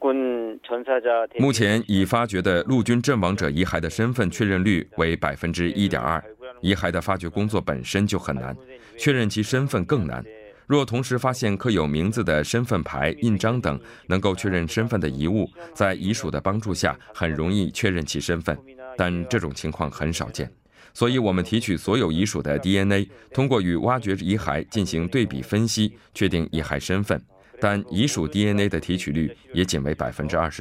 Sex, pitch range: male, 85-115 Hz